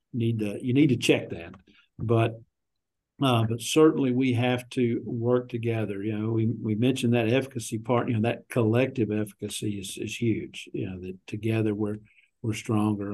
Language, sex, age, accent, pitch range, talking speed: English, male, 50-69, American, 110-125 Hz, 180 wpm